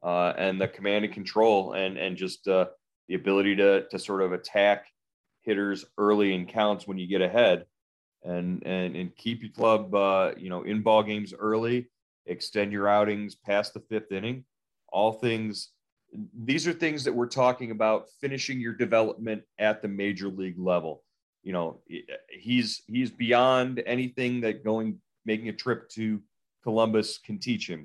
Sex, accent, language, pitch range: male, American, English, 95-110 Hz